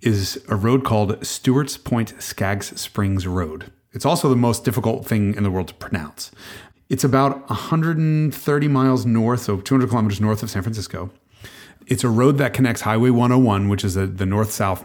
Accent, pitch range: American, 95-130 Hz